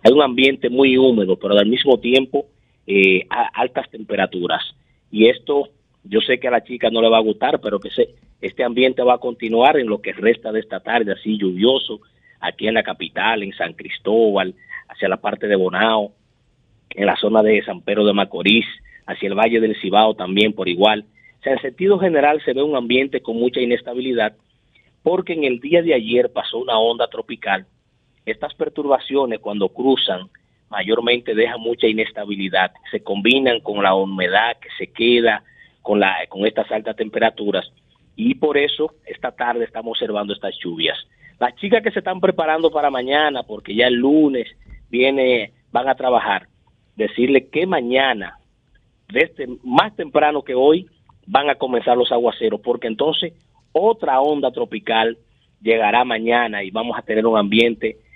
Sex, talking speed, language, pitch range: male, 170 wpm, Spanish, 110-135 Hz